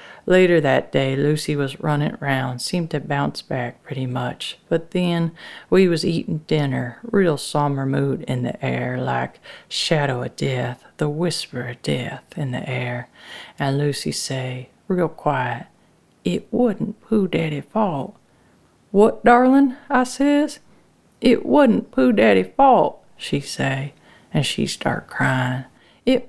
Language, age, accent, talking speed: English, 50-69, American, 140 wpm